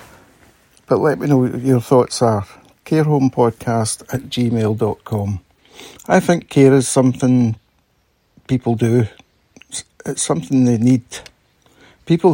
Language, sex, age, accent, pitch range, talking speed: English, male, 60-79, British, 110-130 Hz, 110 wpm